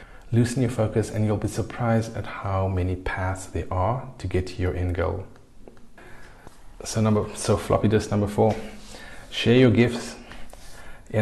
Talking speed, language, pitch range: 160 wpm, English, 95-110 Hz